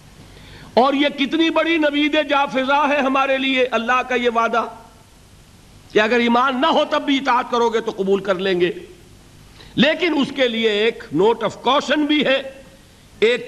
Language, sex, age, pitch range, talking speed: Urdu, male, 50-69, 180-250 Hz, 180 wpm